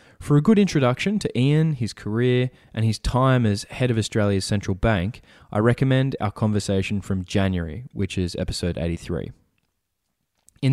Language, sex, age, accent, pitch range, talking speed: English, male, 20-39, Australian, 95-125 Hz, 155 wpm